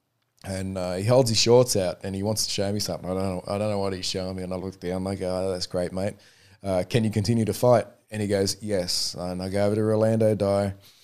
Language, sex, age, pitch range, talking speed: English, male, 20-39, 95-120 Hz, 285 wpm